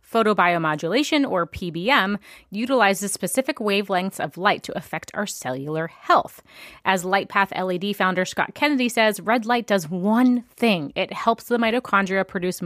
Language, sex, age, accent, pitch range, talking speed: English, female, 30-49, American, 180-230 Hz, 140 wpm